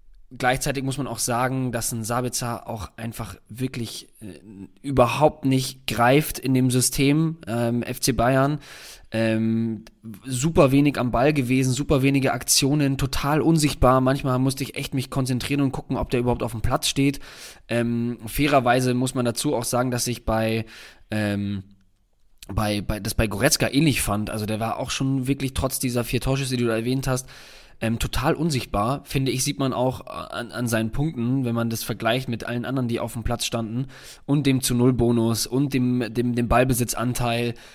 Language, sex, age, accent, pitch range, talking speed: German, male, 20-39, German, 110-135 Hz, 175 wpm